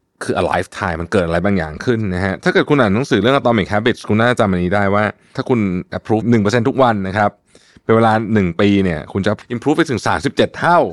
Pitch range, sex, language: 90-120 Hz, male, Thai